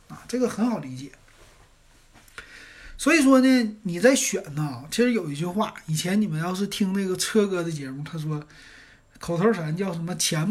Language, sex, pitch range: Chinese, male, 150-235 Hz